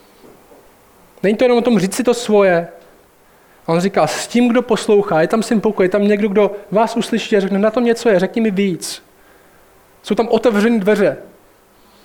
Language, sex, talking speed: Czech, male, 195 wpm